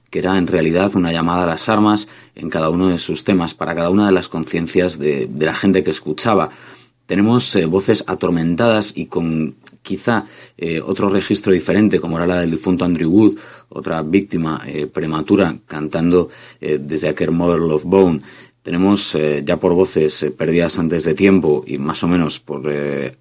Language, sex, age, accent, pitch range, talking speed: Spanish, male, 30-49, Spanish, 80-100 Hz, 185 wpm